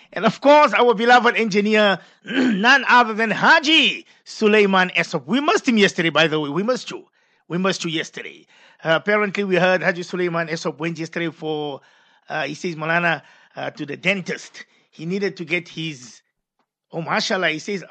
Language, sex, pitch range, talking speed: English, male, 185-265 Hz, 175 wpm